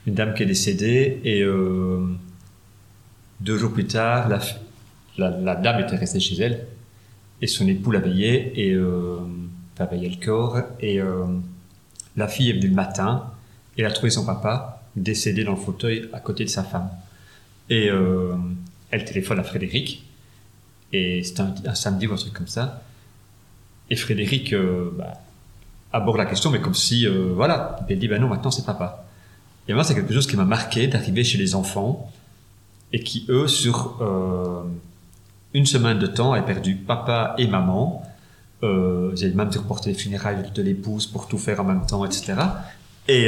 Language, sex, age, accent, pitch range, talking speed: French, male, 40-59, French, 95-120 Hz, 185 wpm